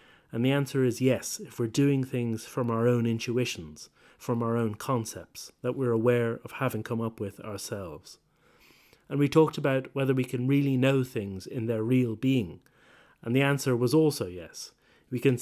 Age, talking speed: 30-49, 185 wpm